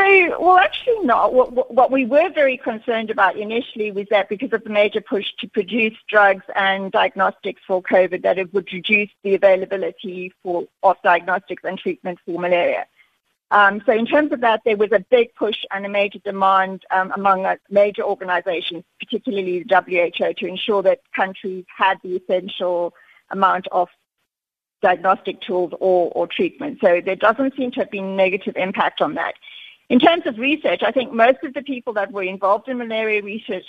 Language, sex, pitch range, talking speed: English, female, 185-230 Hz, 180 wpm